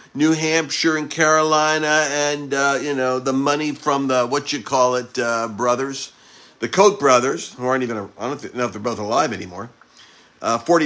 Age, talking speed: 50-69, 190 wpm